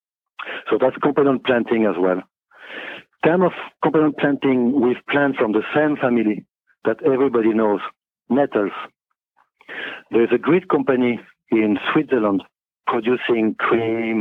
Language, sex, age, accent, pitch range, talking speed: English, male, 60-79, French, 105-125 Hz, 120 wpm